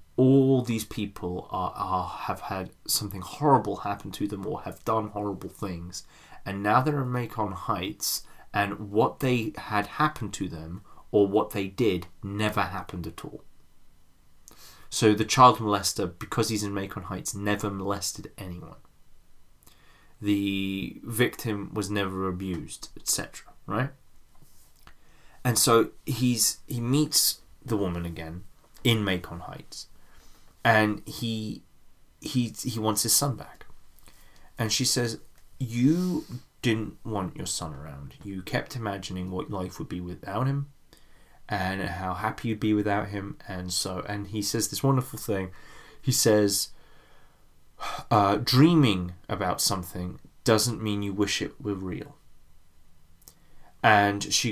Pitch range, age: 95-115 Hz, 20-39